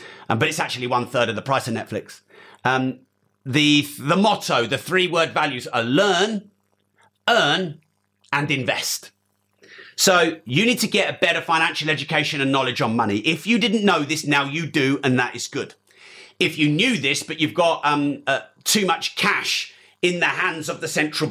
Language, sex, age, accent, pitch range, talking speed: English, male, 40-59, British, 135-175 Hz, 185 wpm